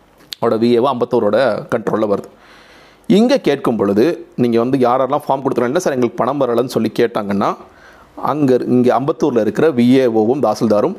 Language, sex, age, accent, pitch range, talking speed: Tamil, male, 40-59, native, 115-140 Hz, 130 wpm